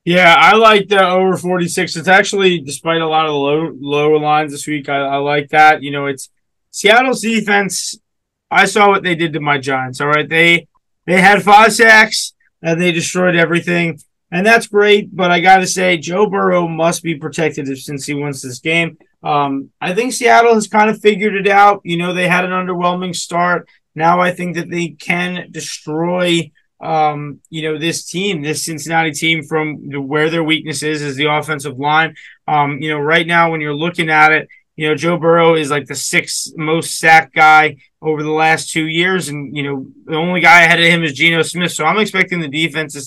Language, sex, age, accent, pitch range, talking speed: English, male, 20-39, American, 150-175 Hz, 205 wpm